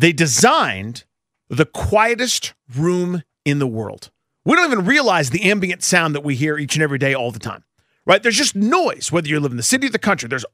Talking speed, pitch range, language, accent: 220 wpm, 150-220 Hz, English, American